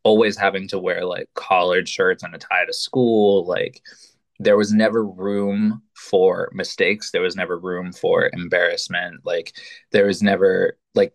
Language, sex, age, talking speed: English, male, 20-39, 160 wpm